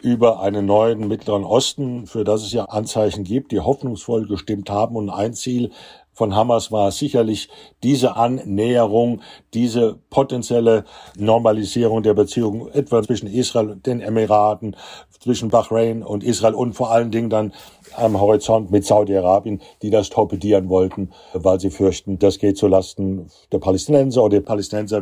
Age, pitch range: 60-79, 105-125 Hz